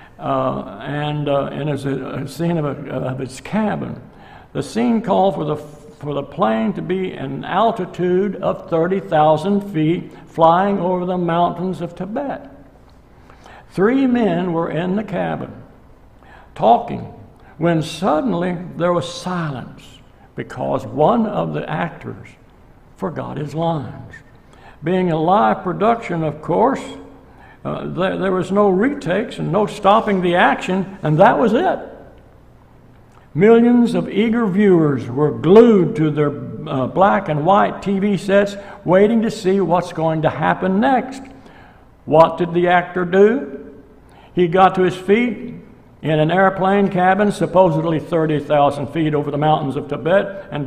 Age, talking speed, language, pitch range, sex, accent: 60-79, 140 wpm, English, 150-195 Hz, male, American